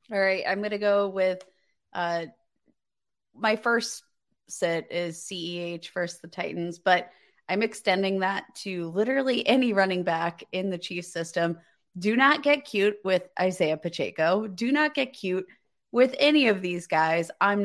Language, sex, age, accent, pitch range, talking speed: English, female, 20-39, American, 175-230 Hz, 155 wpm